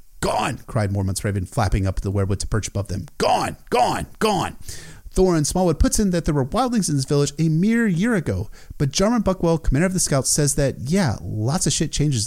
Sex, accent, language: male, American, English